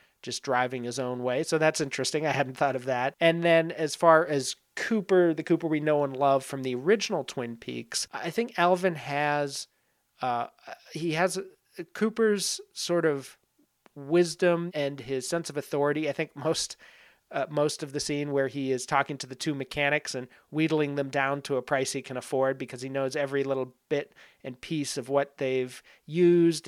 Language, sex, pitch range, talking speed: English, male, 135-160 Hz, 190 wpm